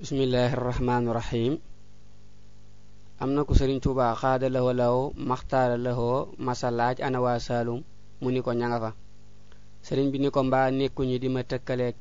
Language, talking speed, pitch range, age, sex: French, 65 wpm, 110-135 Hz, 20-39, male